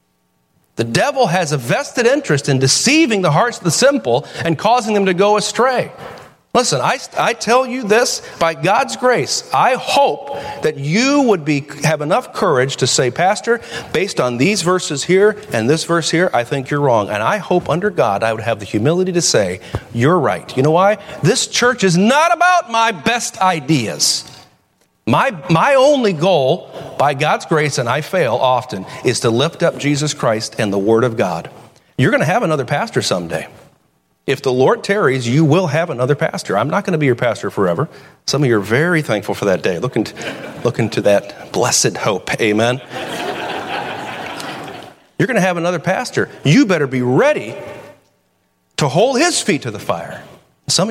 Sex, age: male, 40-59